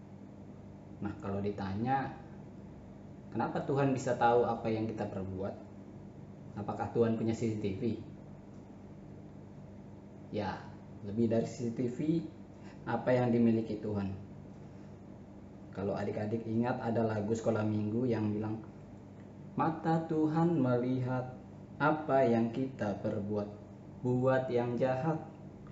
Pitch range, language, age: 100-130 Hz, Indonesian, 20-39